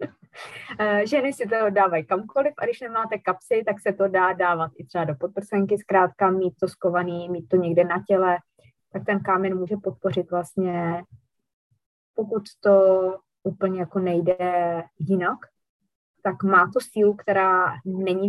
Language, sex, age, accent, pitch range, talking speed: Czech, female, 20-39, native, 175-215 Hz, 150 wpm